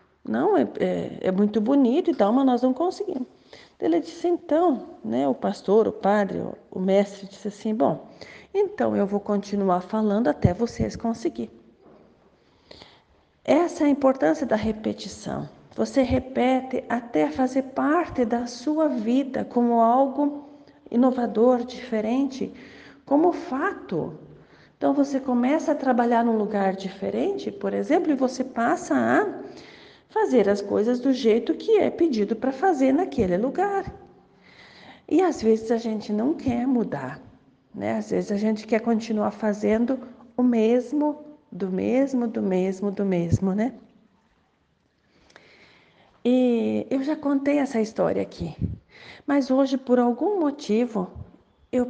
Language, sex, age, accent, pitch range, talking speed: Portuguese, female, 40-59, Brazilian, 220-285 Hz, 135 wpm